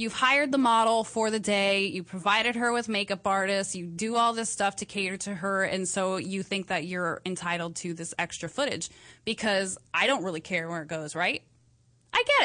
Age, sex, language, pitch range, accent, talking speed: 20-39, female, English, 195-265 Hz, American, 210 wpm